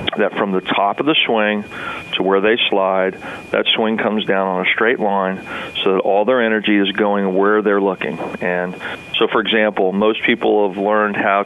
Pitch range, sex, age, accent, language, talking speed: 95-110 Hz, male, 40-59, American, English, 200 wpm